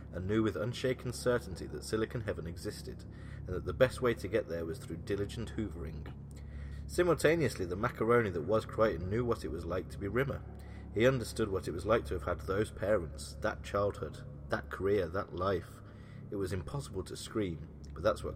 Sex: male